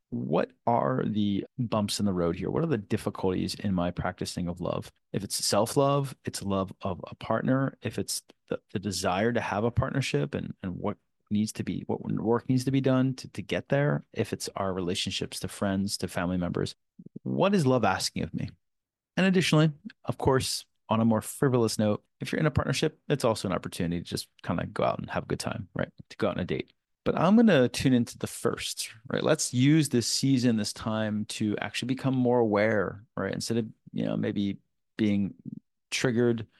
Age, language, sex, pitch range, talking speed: 30-49, English, male, 100-130 Hz, 210 wpm